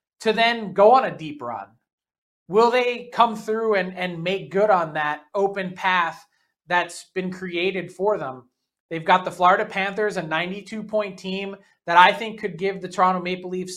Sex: male